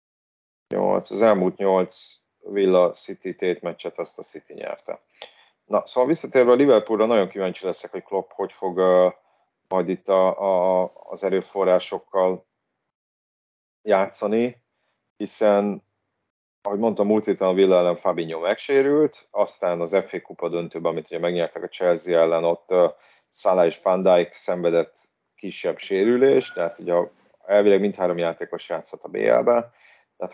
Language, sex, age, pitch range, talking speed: Hungarian, male, 30-49, 85-110 Hz, 140 wpm